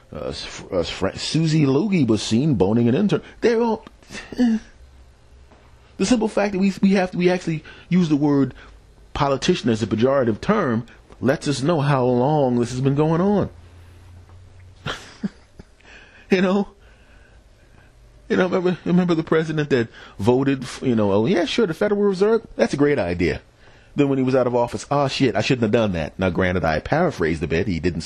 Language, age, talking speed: English, 40-59, 175 wpm